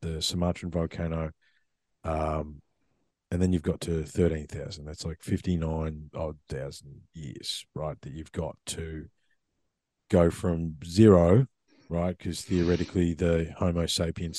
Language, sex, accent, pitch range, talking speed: English, male, Australian, 85-100 Hz, 125 wpm